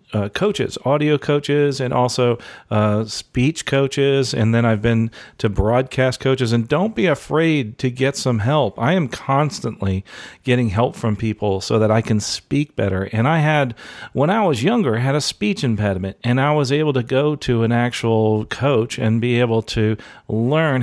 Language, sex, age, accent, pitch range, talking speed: English, male, 40-59, American, 110-140 Hz, 180 wpm